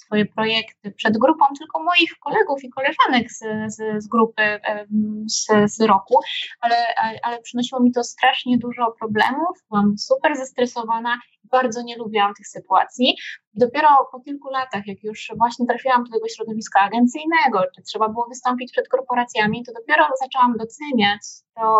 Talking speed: 150 wpm